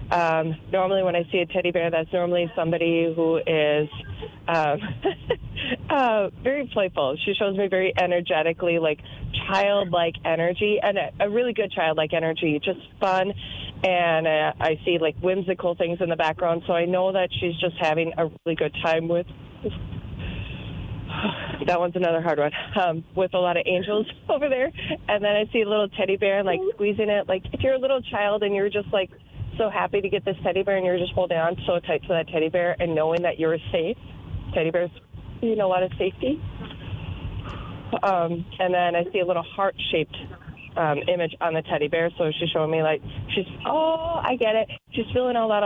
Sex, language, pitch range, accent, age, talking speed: female, English, 165-205 Hz, American, 20-39, 195 wpm